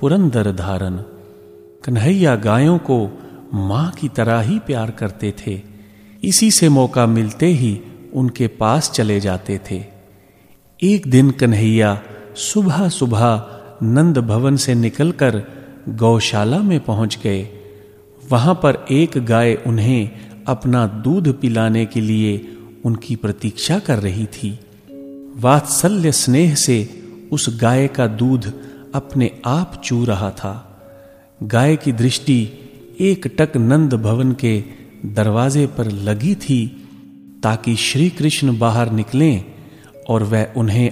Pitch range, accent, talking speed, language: 105-140 Hz, native, 120 wpm, Hindi